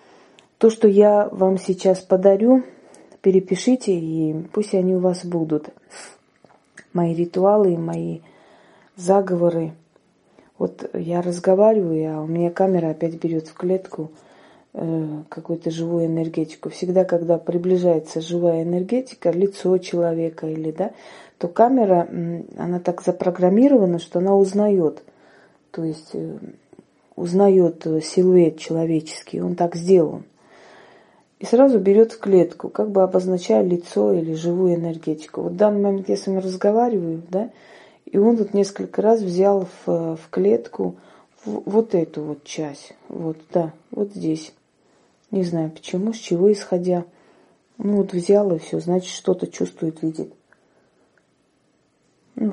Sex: female